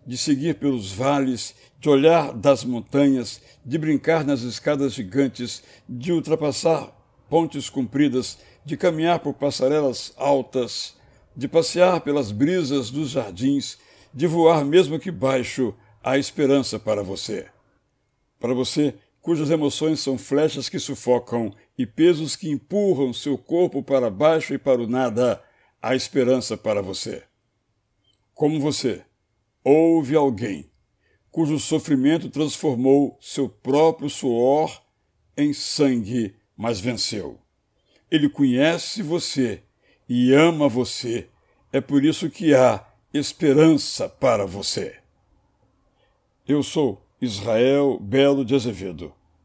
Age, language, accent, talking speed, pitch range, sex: 60-79, Portuguese, Brazilian, 115 wpm, 120-150 Hz, male